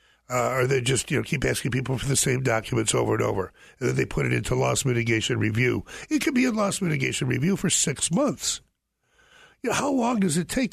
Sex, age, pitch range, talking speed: male, 60-79, 125-185 Hz, 235 wpm